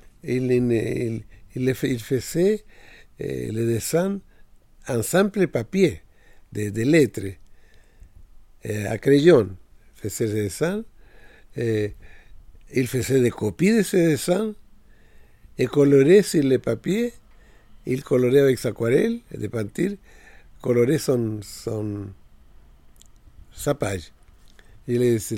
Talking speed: 110 wpm